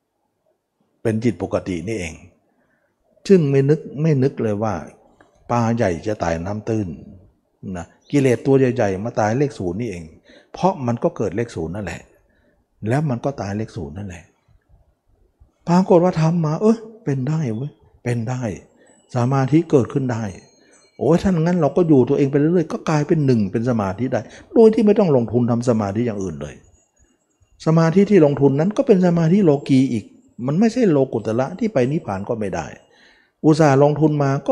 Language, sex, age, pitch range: Thai, male, 60-79, 105-150 Hz